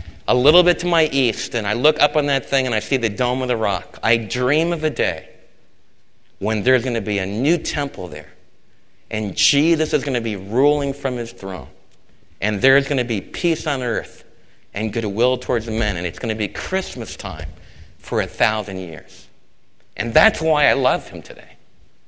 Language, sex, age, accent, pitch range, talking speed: English, male, 50-69, American, 110-150 Hz, 205 wpm